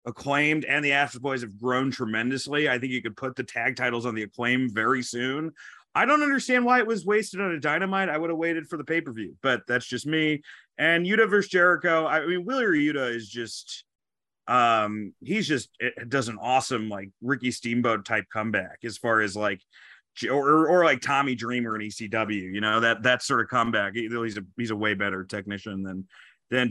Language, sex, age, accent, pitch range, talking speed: English, male, 30-49, American, 115-175 Hz, 205 wpm